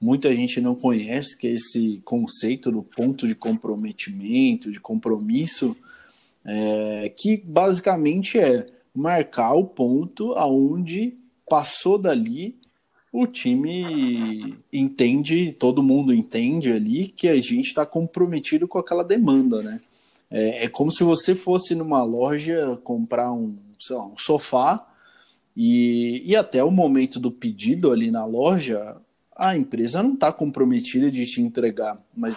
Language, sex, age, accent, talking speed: Portuguese, male, 20-39, Brazilian, 135 wpm